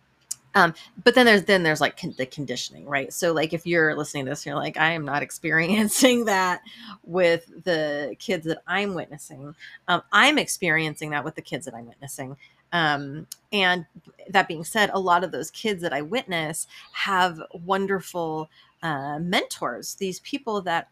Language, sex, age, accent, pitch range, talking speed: English, female, 30-49, American, 155-195 Hz, 170 wpm